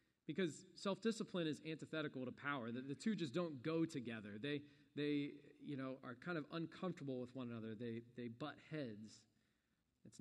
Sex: male